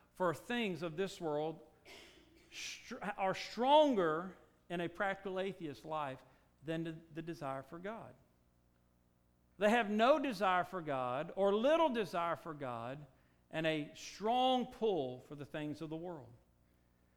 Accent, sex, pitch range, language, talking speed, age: American, male, 135-205 Hz, English, 135 wpm, 50-69